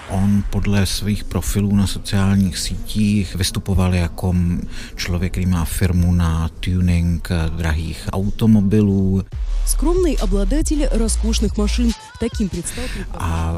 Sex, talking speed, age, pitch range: male, 80 wpm, 50-69, 85-100 Hz